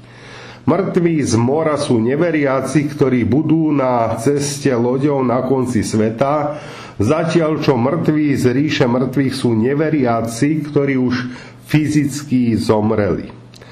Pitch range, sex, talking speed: 115-145 Hz, male, 105 wpm